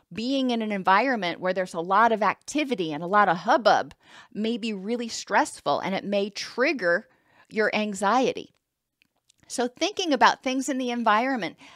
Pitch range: 205-265 Hz